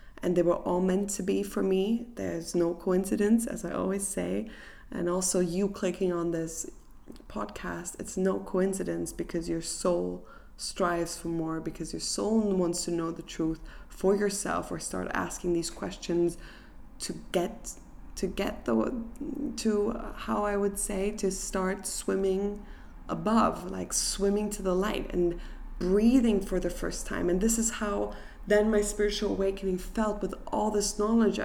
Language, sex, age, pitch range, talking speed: English, female, 20-39, 170-200 Hz, 160 wpm